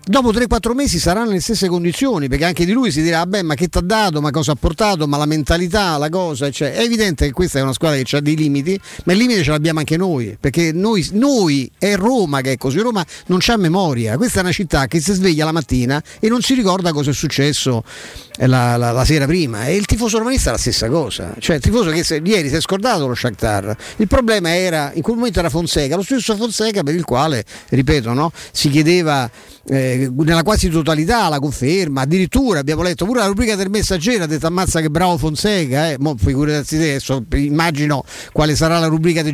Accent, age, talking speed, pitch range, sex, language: native, 50-69, 220 wpm, 145-190 Hz, male, Italian